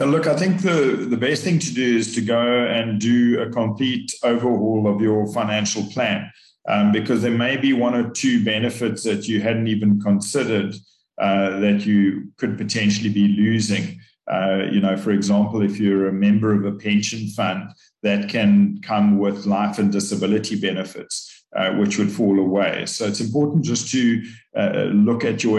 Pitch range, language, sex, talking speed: 100-120 Hz, English, male, 180 wpm